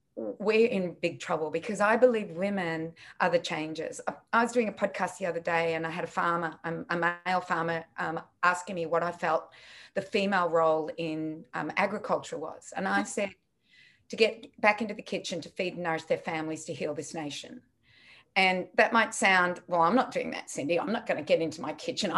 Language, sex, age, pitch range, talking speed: English, female, 30-49, 170-230 Hz, 210 wpm